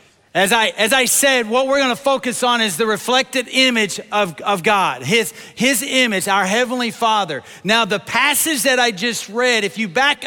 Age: 40-59